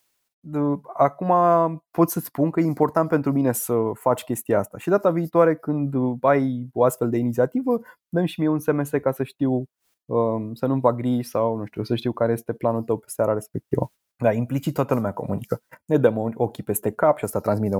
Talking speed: 195 wpm